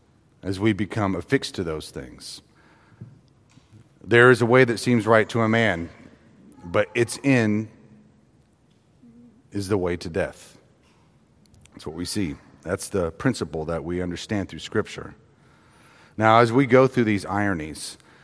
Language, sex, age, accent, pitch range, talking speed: English, male, 40-59, American, 90-115 Hz, 145 wpm